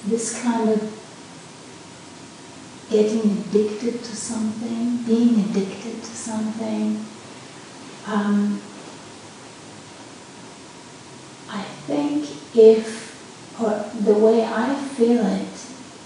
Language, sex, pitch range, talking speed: English, female, 210-235 Hz, 80 wpm